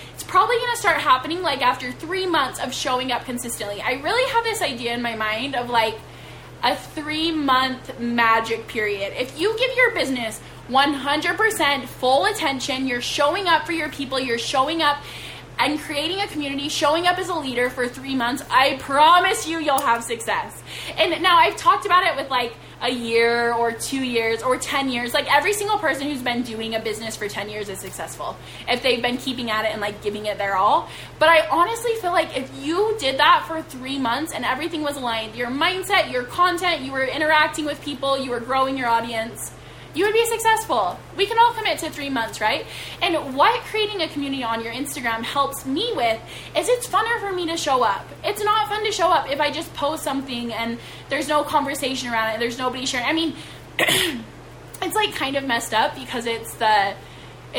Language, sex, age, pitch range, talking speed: English, female, 10-29, 245-330 Hz, 205 wpm